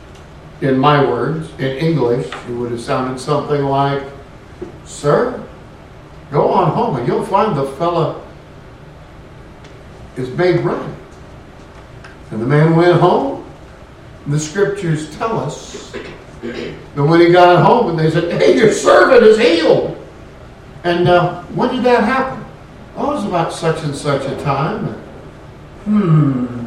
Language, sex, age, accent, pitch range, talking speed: English, male, 60-79, American, 140-175 Hz, 135 wpm